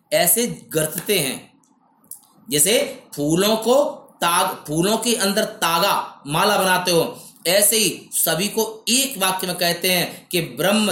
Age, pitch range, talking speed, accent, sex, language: 30-49, 185-230 Hz, 135 wpm, native, male, Hindi